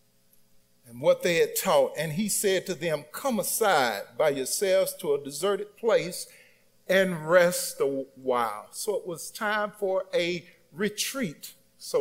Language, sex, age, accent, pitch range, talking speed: English, male, 50-69, American, 155-220 Hz, 150 wpm